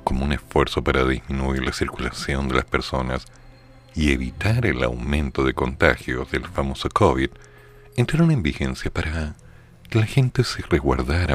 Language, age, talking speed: Spanish, 50-69, 150 wpm